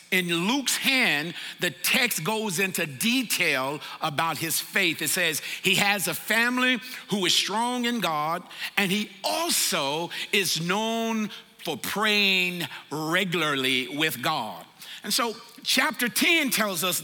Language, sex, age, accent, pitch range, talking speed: English, male, 50-69, American, 180-250 Hz, 135 wpm